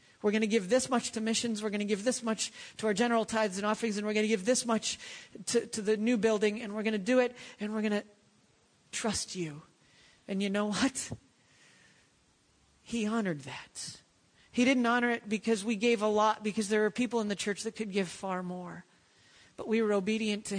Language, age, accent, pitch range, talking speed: English, 40-59, American, 190-240 Hz, 225 wpm